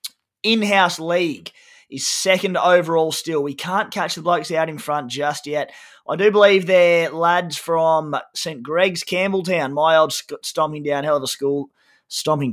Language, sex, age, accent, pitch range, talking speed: English, male, 20-39, Australian, 145-180 Hz, 165 wpm